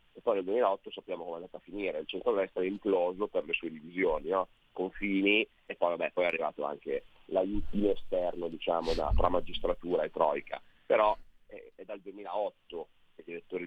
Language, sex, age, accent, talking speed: Italian, male, 30-49, native, 190 wpm